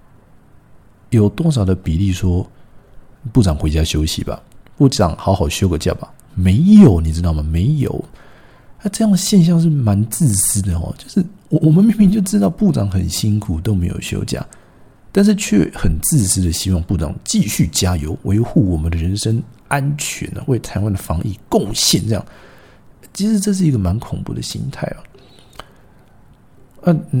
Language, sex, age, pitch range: Chinese, male, 50-69, 95-140 Hz